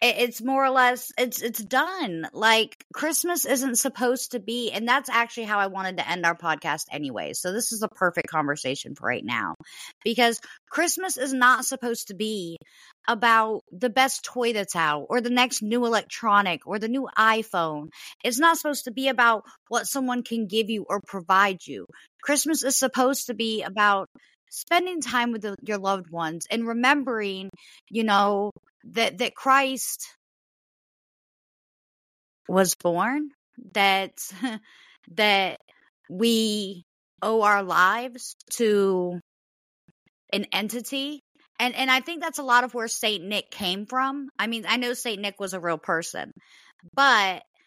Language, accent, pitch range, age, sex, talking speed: English, American, 195-250 Hz, 50-69, female, 155 wpm